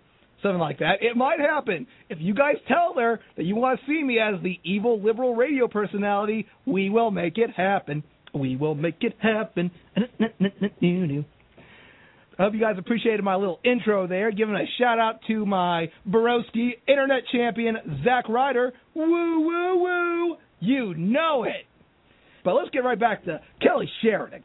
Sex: male